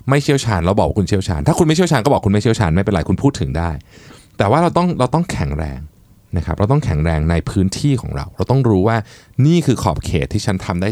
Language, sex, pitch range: Thai, male, 85-125 Hz